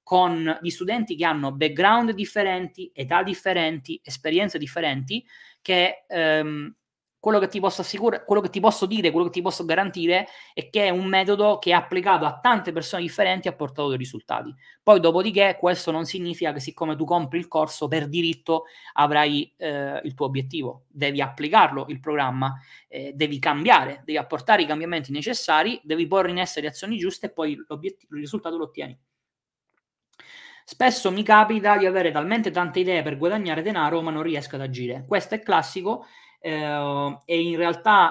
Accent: native